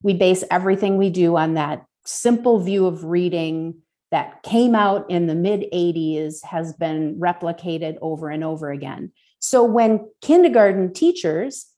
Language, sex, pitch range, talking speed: English, female, 165-220 Hz, 145 wpm